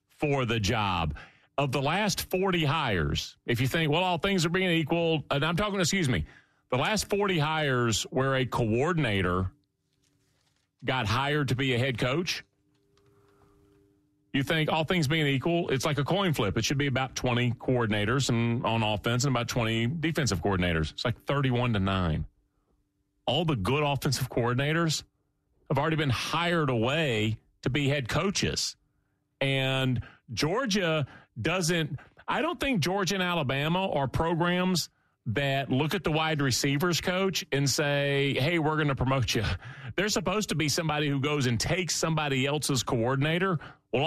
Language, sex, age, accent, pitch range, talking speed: English, male, 40-59, American, 120-165 Hz, 160 wpm